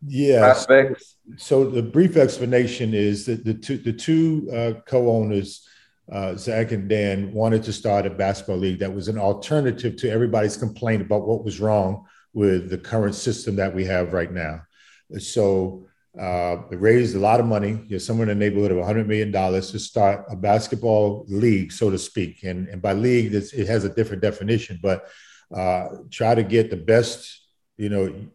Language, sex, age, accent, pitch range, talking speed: English, male, 50-69, American, 100-115 Hz, 175 wpm